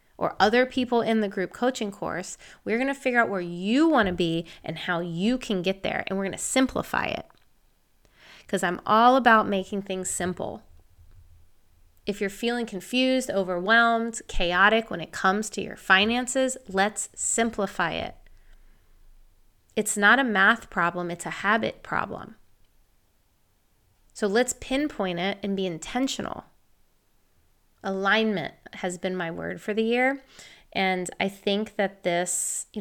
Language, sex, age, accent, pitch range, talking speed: English, female, 30-49, American, 175-215 Hz, 150 wpm